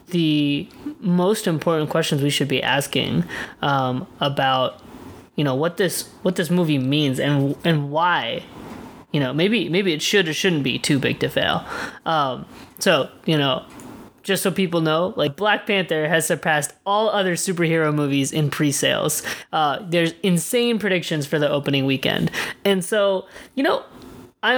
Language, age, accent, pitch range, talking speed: English, 20-39, American, 150-190 Hz, 160 wpm